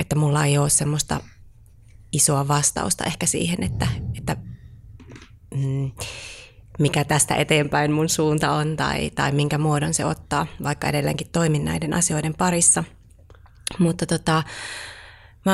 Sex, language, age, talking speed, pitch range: female, Finnish, 30-49, 125 wpm, 115-155 Hz